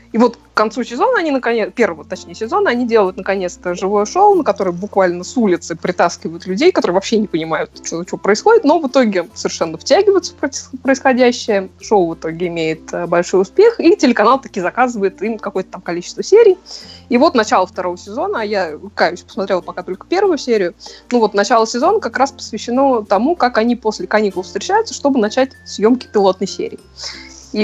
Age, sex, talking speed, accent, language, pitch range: 20-39, female, 180 wpm, native, Russian, 185-255 Hz